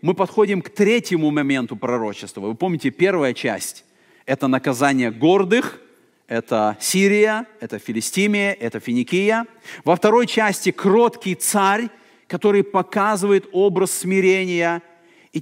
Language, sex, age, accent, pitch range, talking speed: Russian, male, 40-59, native, 145-205 Hz, 115 wpm